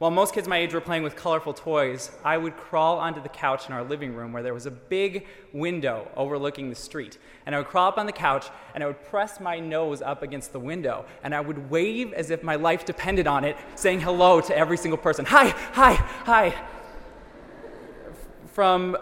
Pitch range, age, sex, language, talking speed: 135-170 Hz, 20-39, male, English, 215 wpm